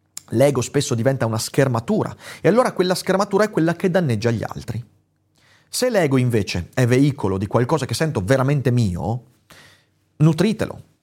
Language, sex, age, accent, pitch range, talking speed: Italian, male, 30-49, native, 110-160 Hz, 145 wpm